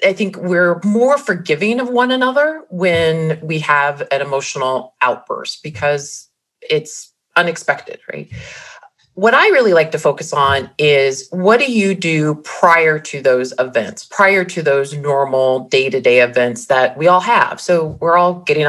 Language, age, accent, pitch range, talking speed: English, 30-49, American, 140-175 Hz, 155 wpm